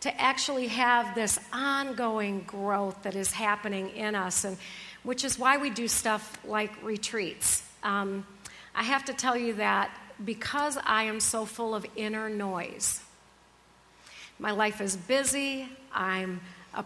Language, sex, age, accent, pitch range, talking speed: English, female, 50-69, American, 205-245 Hz, 145 wpm